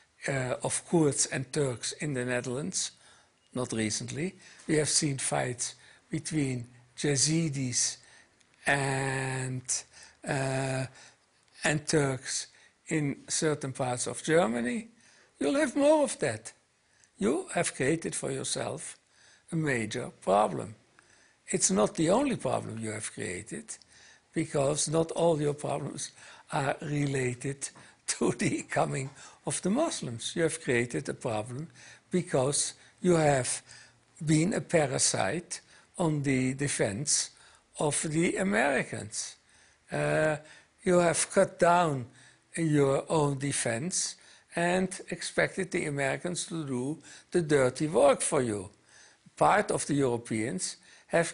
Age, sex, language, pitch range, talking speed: 60-79, male, English, 130-170 Hz, 115 wpm